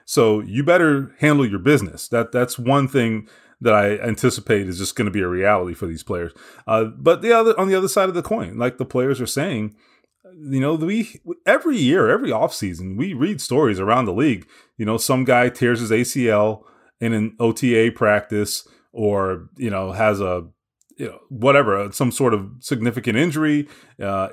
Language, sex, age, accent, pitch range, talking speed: English, male, 30-49, American, 110-150 Hz, 190 wpm